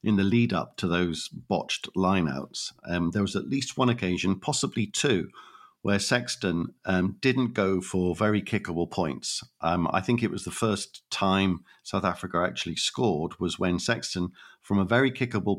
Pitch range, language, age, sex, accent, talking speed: 90-110 Hz, English, 50-69, male, British, 175 wpm